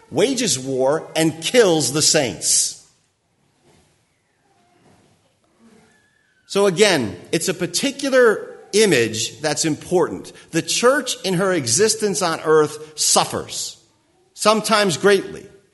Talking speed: 90 wpm